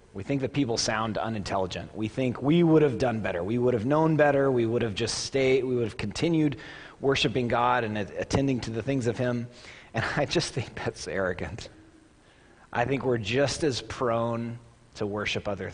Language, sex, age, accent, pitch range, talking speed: English, male, 30-49, American, 105-135 Hz, 195 wpm